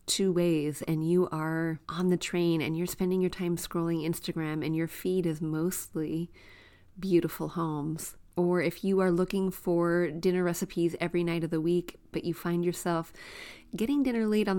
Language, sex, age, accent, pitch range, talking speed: English, female, 30-49, American, 155-180 Hz, 175 wpm